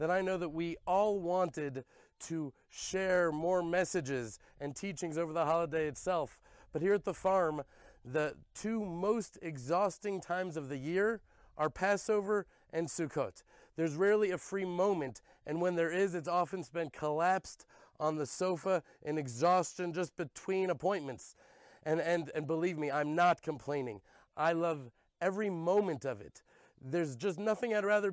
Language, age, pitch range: English, 30-49, 160-195 Hz